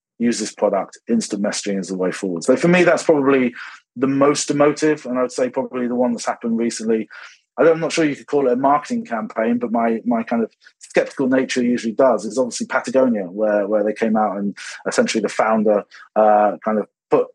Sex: male